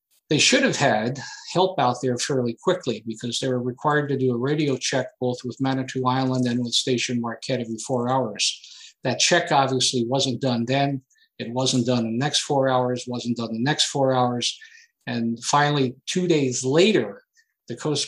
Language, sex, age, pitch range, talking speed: English, male, 50-69, 120-140 Hz, 190 wpm